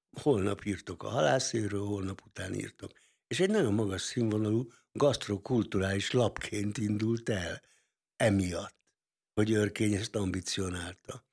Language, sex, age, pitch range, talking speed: Hungarian, male, 60-79, 95-110 Hz, 110 wpm